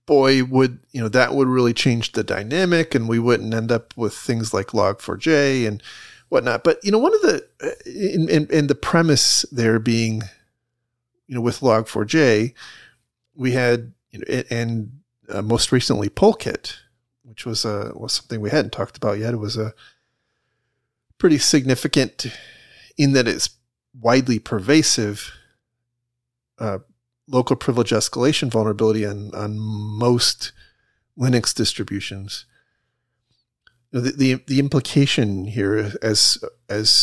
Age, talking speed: 40-59, 130 wpm